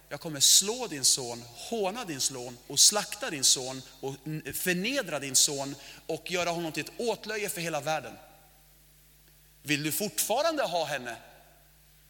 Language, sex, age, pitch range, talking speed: Swedish, male, 30-49, 145-165 Hz, 150 wpm